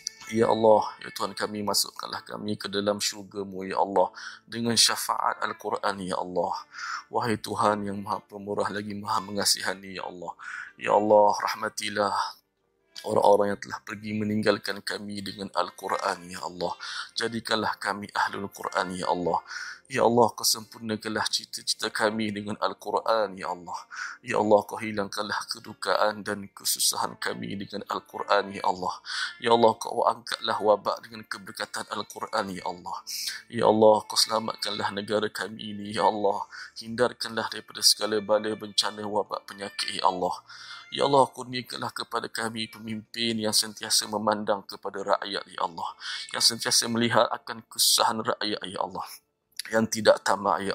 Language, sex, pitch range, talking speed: Malayalam, male, 100-110 Hz, 140 wpm